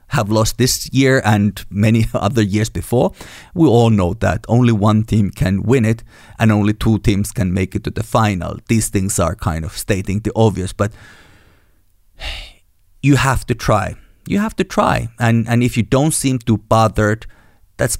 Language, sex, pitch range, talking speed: English, male, 100-115 Hz, 185 wpm